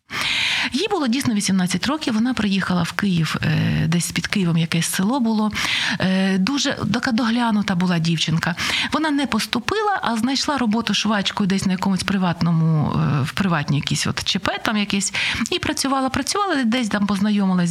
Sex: female